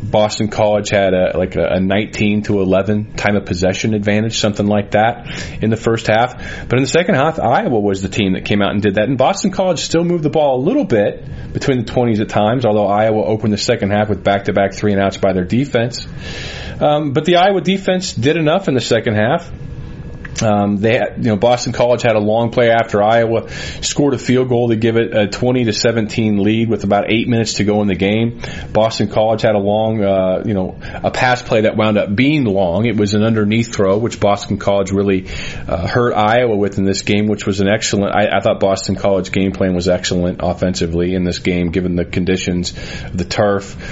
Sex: male